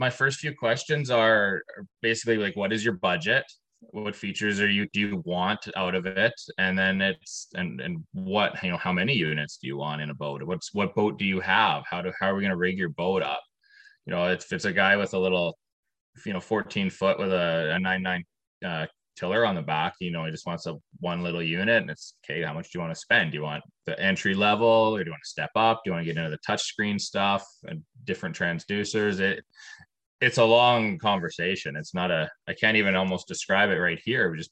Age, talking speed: 20-39, 240 wpm